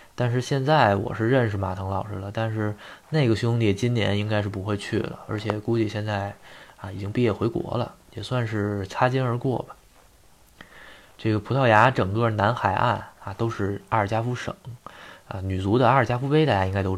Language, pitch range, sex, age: Chinese, 95-120 Hz, male, 20-39